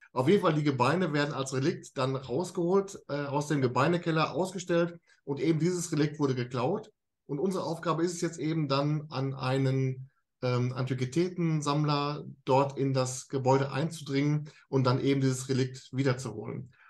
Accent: German